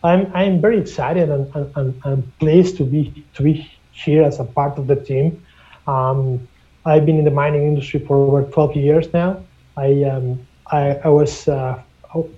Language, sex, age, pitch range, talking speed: English, male, 30-49, 135-155 Hz, 185 wpm